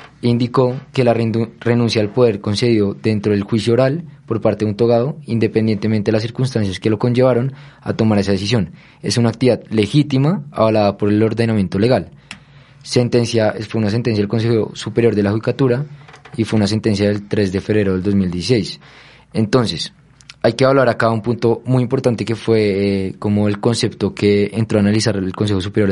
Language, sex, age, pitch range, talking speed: Spanish, male, 20-39, 105-125 Hz, 180 wpm